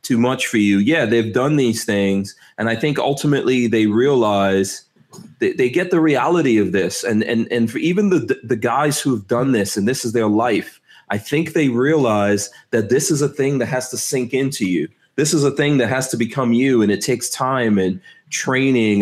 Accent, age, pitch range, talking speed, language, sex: American, 30-49, 110-145 Hz, 215 wpm, English, male